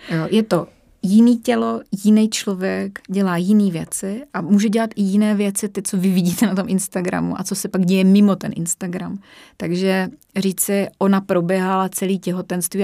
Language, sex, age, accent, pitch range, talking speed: Czech, female, 30-49, native, 180-205 Hz, 175 wpm